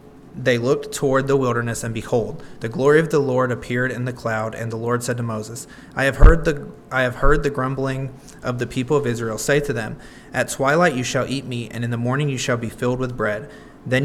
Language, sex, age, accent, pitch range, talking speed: English, male, 30-49, American, 120-140 Hz, 240 wpm